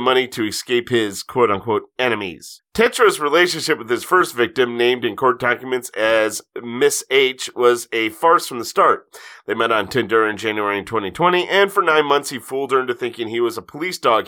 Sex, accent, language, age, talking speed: male, American, English, 30-49, 200 wpm